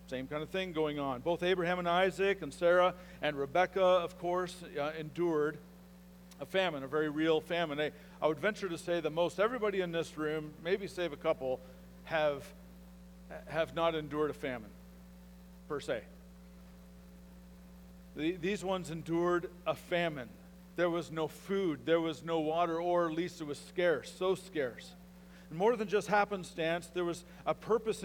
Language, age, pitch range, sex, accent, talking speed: English, 50-69, 130-175 Hz, male, American, 165 wpm